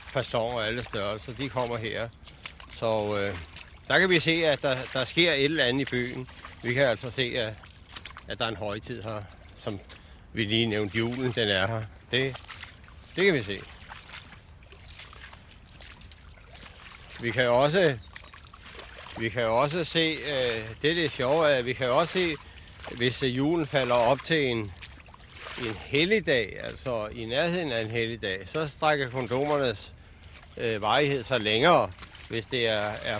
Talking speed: 155 wpm